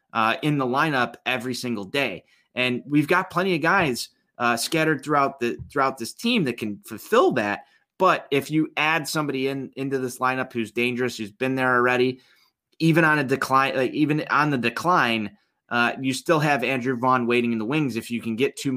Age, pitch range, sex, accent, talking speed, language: 30-49, 115-135 Hz, male, American, 200 wpm, English